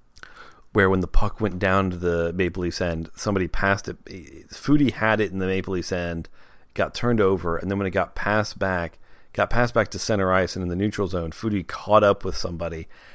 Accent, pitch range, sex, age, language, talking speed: American, 90-110 Hz, male, 30-49, English, 220 wpm